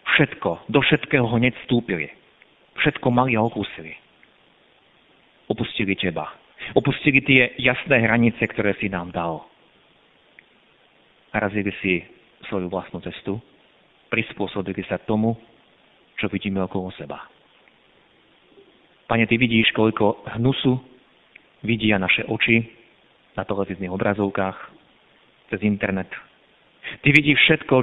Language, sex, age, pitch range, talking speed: Slovak, male, 40-59, 100-125 Hz, 105 wpm